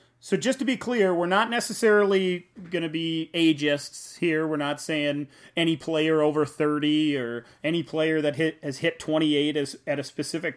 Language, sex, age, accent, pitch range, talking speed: English, male, 30-49, American, 145-175 Hz, 180 wpm